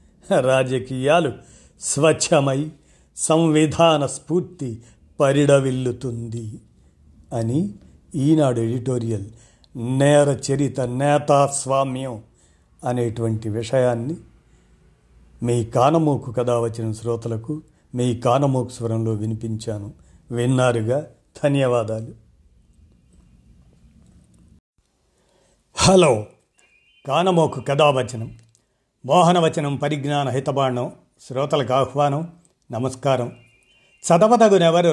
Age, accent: 50-69, native